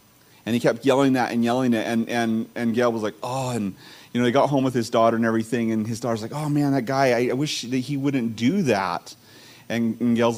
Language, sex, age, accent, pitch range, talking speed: English, male, 40-59, American, 110-135 Hz, 260 wpm